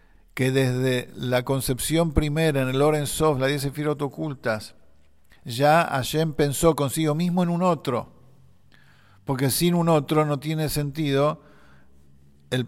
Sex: male